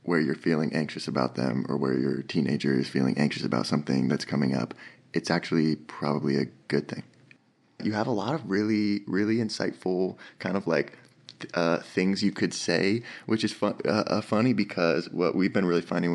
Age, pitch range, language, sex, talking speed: 20-39, 85-100 Hz, English, male, 190 wpm